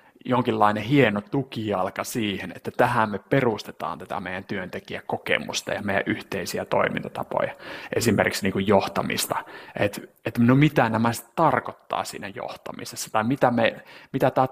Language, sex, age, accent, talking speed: Finnish, male, 30-49, native, 135 wpm